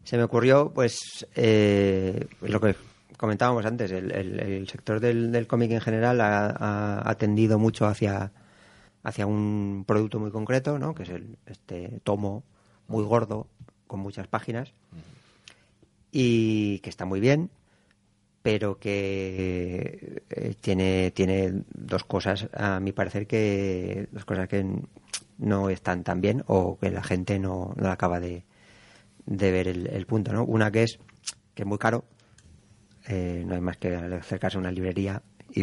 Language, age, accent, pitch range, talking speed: Spanish, 30-49, Spanish, 95-110 Hz, 160 wpm